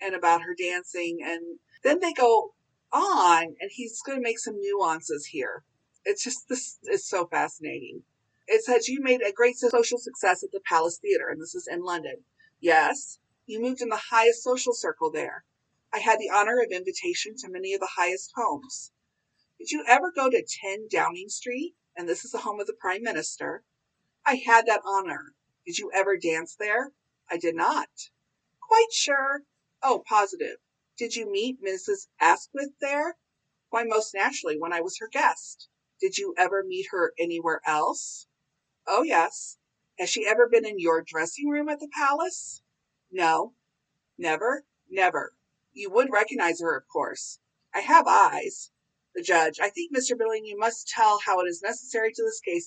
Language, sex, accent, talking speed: English, female, American, 175 wpm